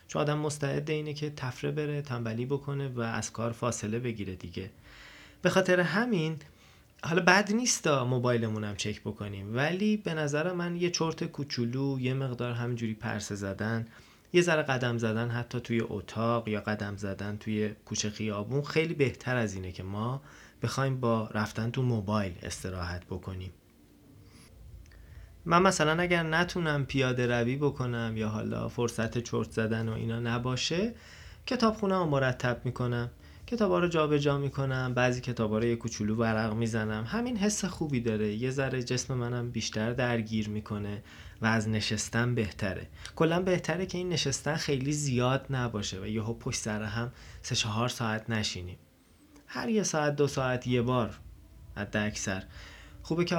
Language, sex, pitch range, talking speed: Persian, male, 105-145 Hz, 150 wpm